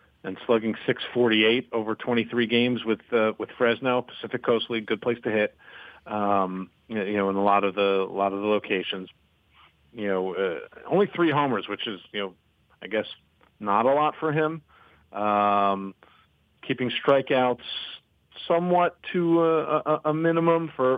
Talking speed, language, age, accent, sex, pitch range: 165 wpm, English, 40-59, American, male, 100-125 Hz